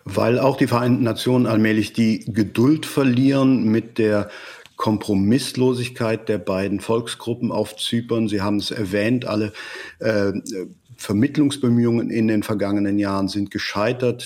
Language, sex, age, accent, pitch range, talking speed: German, male, 50-69, German, 105-125 Hz, 125 wpm